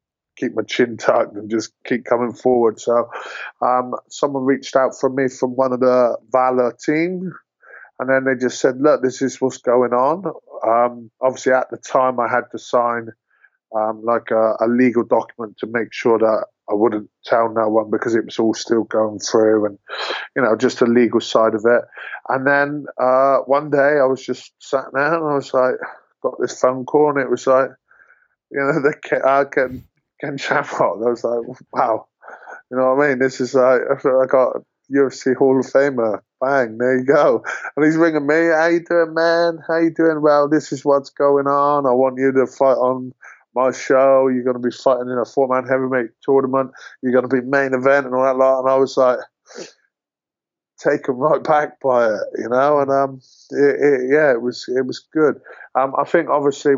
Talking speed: 210 wpm